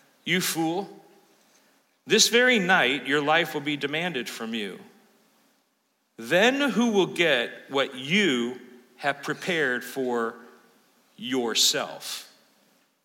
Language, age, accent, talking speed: English, 50-69, American, 100 wpm